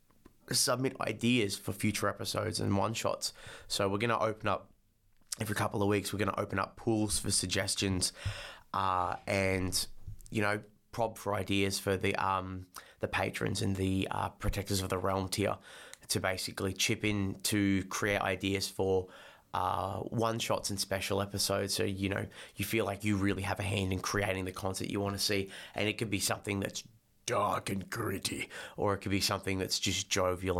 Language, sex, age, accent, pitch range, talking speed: English, male, 20-39, Australian, 95-105 Hz, 190 wpm